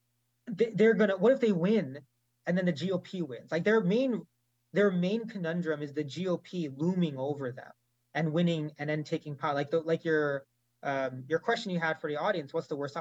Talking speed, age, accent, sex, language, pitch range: 205 wpm, 20-39, American, male, English, 140-180 Hz